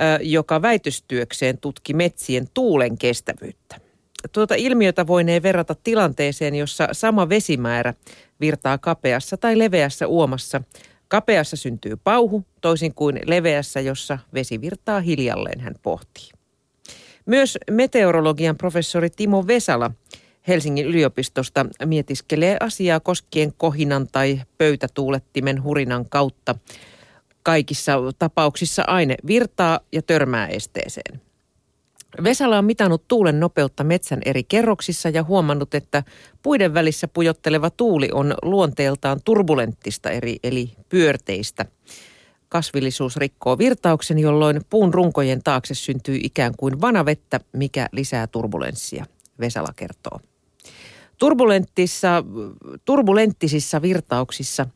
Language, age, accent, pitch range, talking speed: Finnish, 40-59, native, 135-180 Hz, 100 wpm